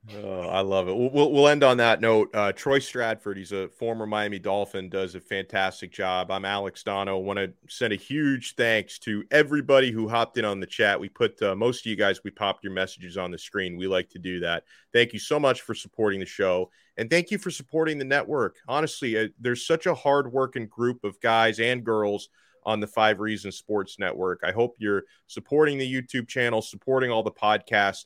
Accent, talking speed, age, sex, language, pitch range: American, 215 wpm, 30-49, male, English, 100-140 Hz